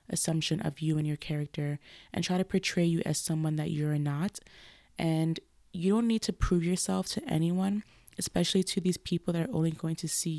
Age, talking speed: 20-39, 200 wpm